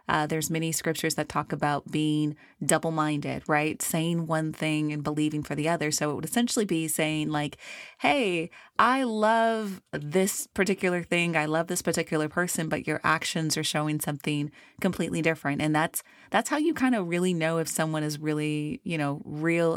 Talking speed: 180 wpm